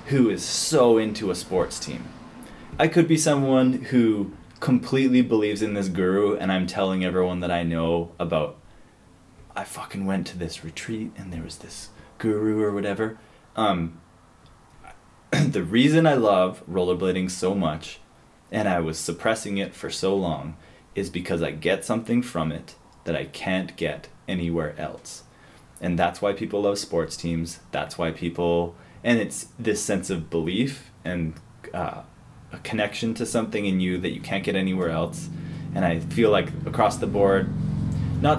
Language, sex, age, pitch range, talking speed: English, male, 20-39, 85-110 Hz, 165 wpm